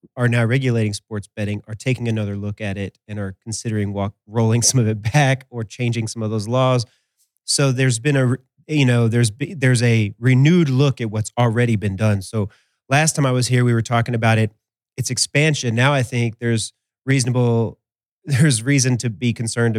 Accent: American